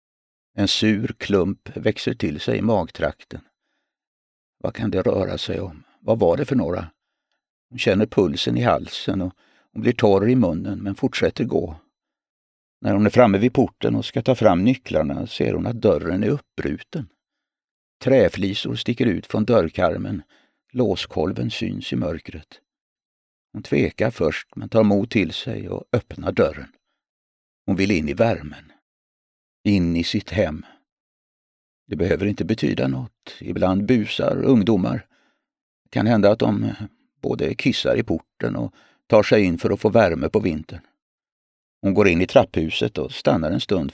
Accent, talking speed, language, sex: native, 155 wpm, Swedish, male